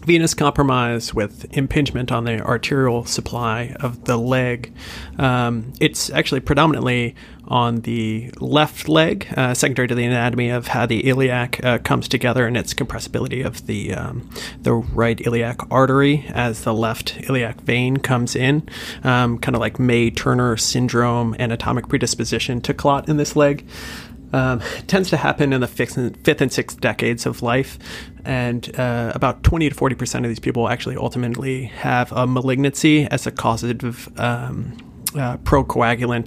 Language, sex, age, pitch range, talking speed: English, male, 30-49, 115-130 Hz, 155 wpm